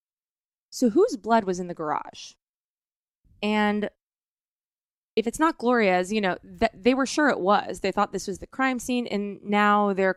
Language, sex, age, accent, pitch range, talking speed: English, female, 20-39, American, 180-210 Hz, 170 wpm